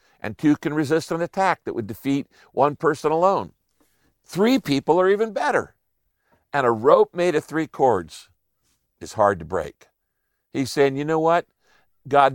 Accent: American